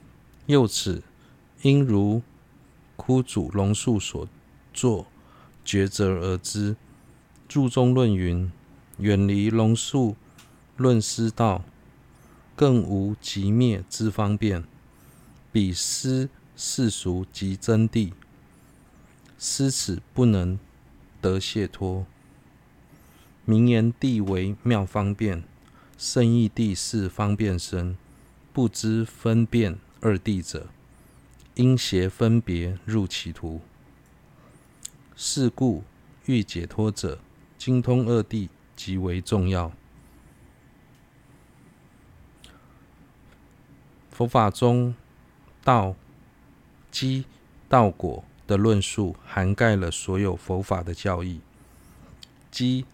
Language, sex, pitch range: Chinese, male, 95-120 Hz